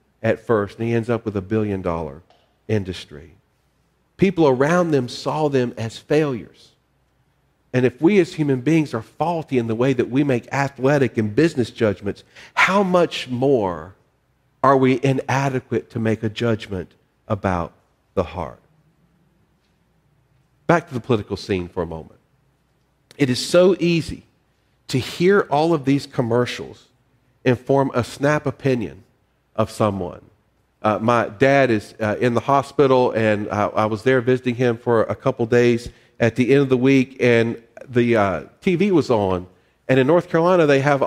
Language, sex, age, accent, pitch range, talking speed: English, male, 50-69, American, 115-145 Hz, 160 wpm